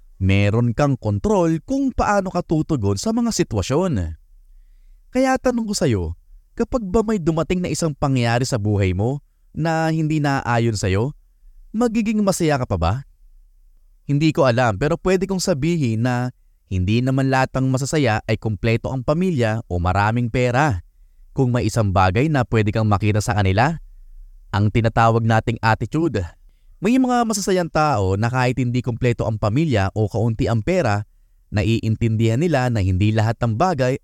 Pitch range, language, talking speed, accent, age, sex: 100-150 Hz, English, 155 wpm, Filipino, 20-39, male